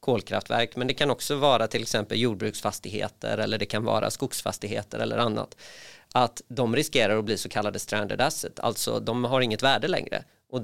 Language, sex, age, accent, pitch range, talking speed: Swedish, male, 30-49, native, 110-125 Hz, 175 wpm